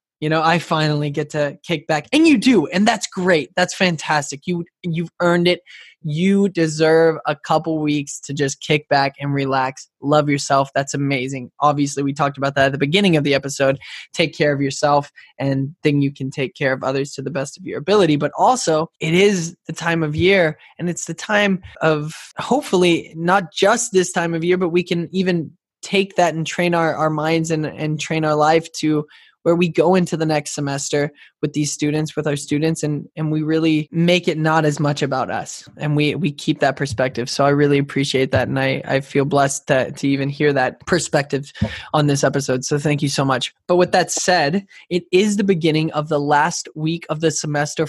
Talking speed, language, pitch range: 215 wpm, English, 145-180 Hz